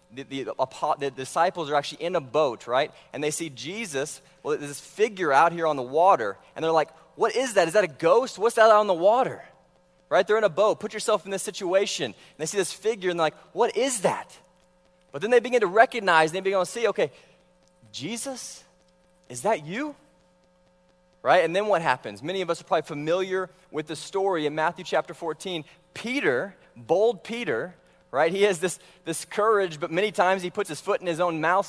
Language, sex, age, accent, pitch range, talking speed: English, male, 20-39, American, 155-205 Hz, 215 wpm